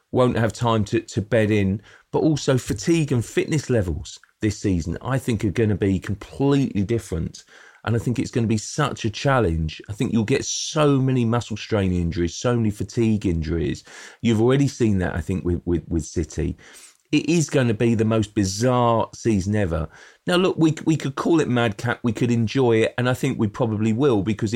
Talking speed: 210 wpm